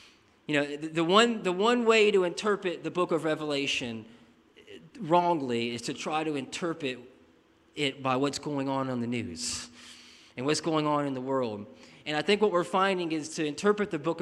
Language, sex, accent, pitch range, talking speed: English, male, American, 140-170 Hz, 190 wpm